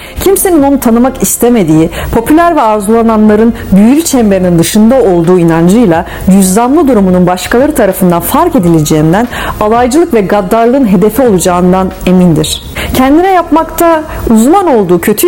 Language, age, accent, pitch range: Turkish, 40-59, native, 185-260 Hz